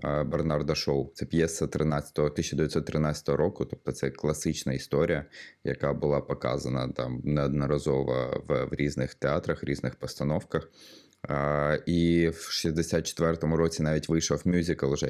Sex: male